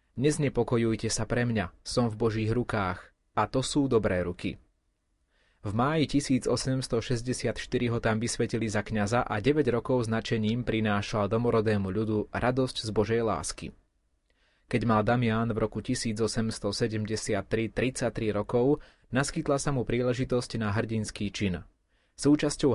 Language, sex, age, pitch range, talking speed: Slovak, male, 30-49, 105-120 Hz, 125 wpm